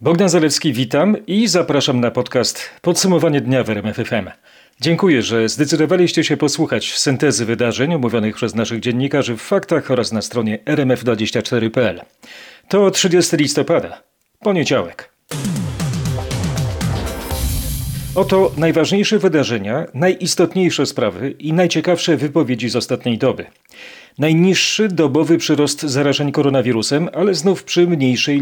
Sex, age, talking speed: male, 40-59, 110 wpm